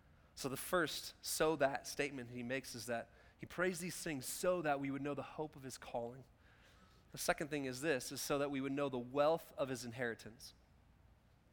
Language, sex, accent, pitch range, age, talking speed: English, male, American, 125-165 Hz, 20-39, 210 wpm